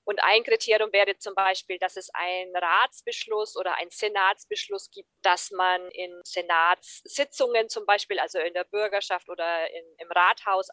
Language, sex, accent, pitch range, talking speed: German, female, German, 180-220 Hz, 150 wpm